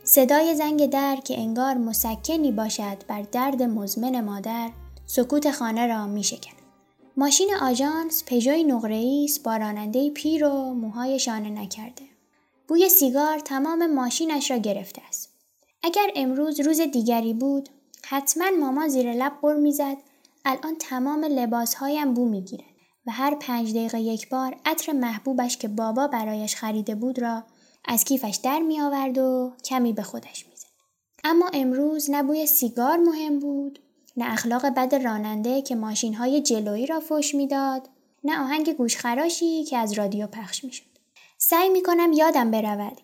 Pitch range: 230-285 Hz